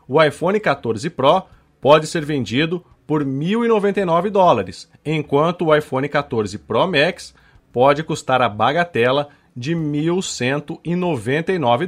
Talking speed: 110 wpm